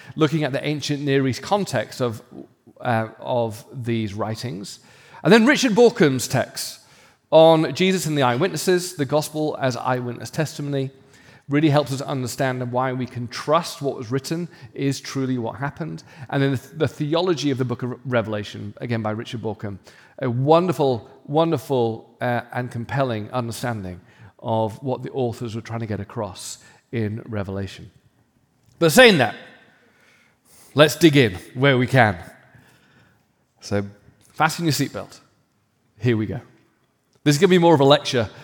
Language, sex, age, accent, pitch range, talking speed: English, male, 40-59, British, 115-155 Hz, 155 wpm